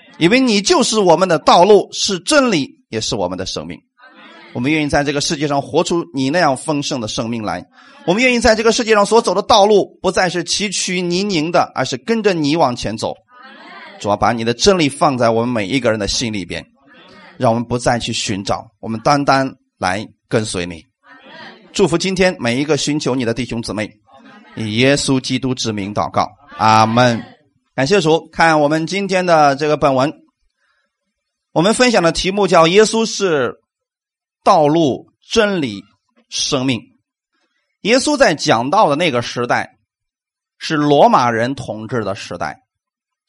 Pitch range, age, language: 130-215 Hz, 30-49, Chinese